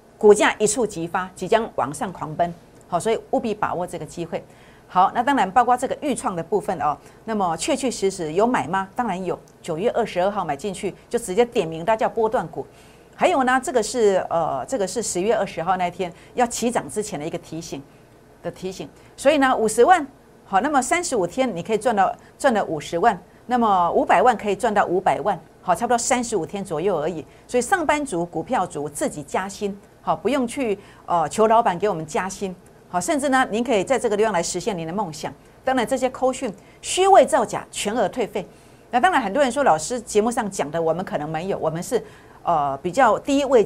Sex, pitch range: female, 175-250 Hz